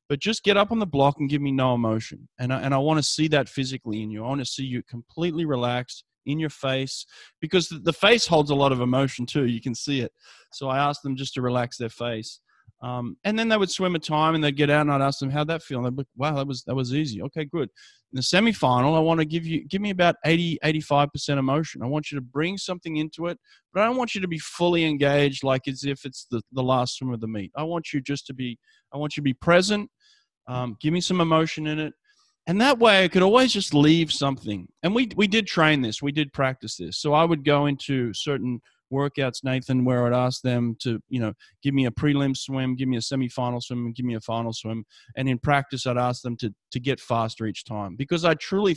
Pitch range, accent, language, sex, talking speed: 125-160 Hz, Australian, English, male, 260 wpm